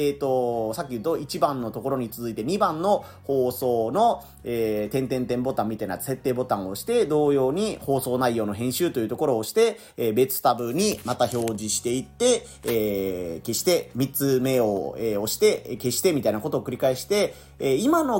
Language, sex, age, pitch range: Japanese, male, 30-49, 125-185 Hz